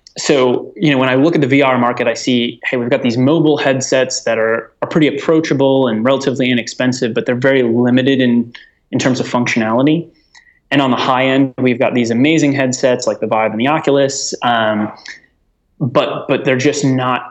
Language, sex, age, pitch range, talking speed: English, male, 20-39, 115-135 Hz, 200 wpm